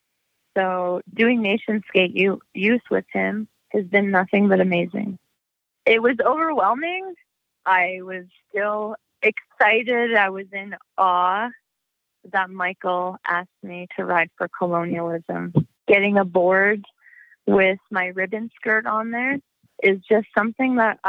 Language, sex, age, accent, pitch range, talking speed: English, female, 20-39, American, 180-205 Hz, 120 wpm